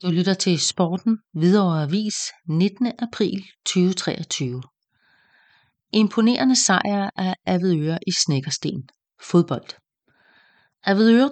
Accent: Danish